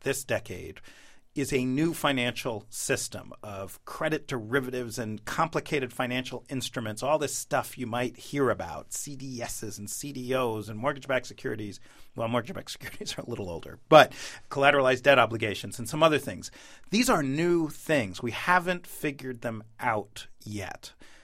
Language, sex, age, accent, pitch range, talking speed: English, male, 40-59, American, 110-145 Hz, 145 wpm